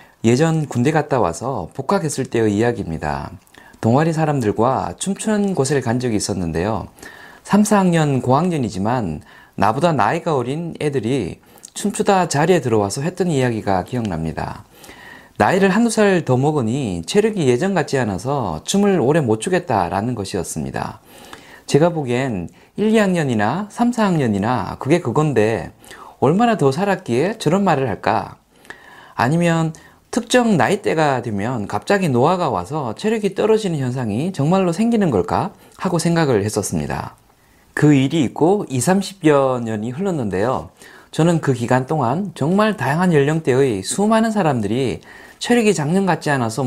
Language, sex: Korean, male